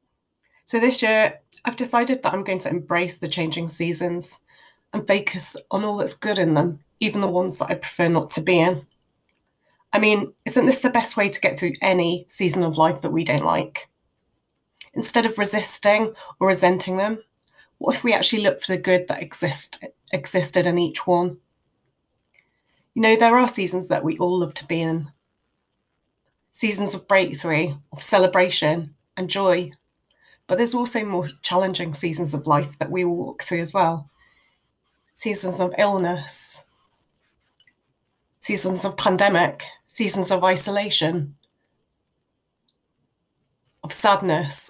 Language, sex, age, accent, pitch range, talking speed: English, female, 30-49, British, 170-205 Hz, 150 wpm